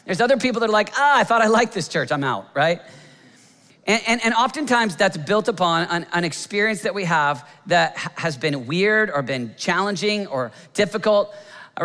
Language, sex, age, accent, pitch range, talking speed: English, male, 40-59, American, 165-205 Hz, 205 wpm